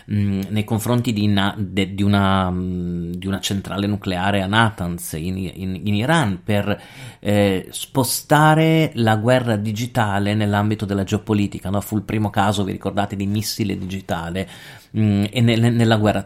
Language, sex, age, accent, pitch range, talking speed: Italian, male, 30-49, native, 100-125 Hz, 150 wpm